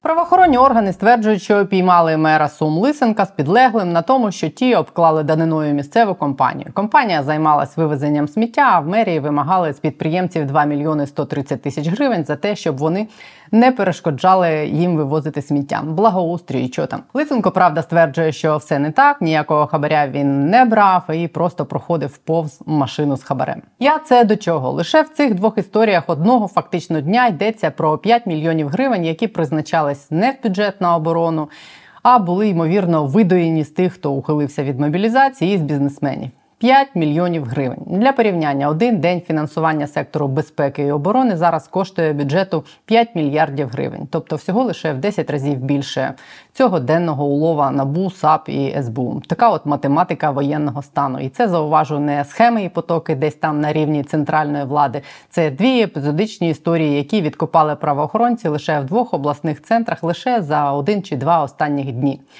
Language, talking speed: Ukrainian, 160 wpm